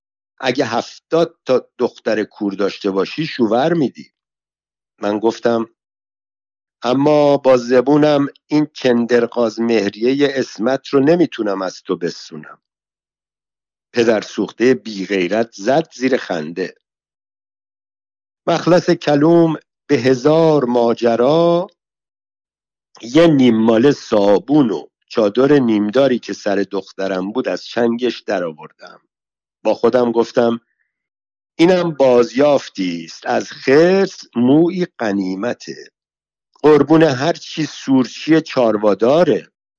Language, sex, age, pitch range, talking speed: Persian, male, 50-69, 105-150 Hz, 95 wpm